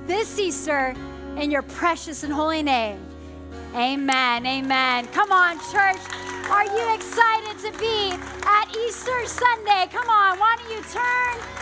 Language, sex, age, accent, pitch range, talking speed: English, female, 30-49, American, 275-405 Hz, 140 wpm